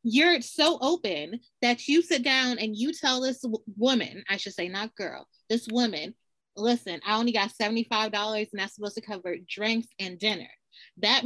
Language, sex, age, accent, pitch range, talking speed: English, female, 20-39, American, 220-275 Hz, 175 wpm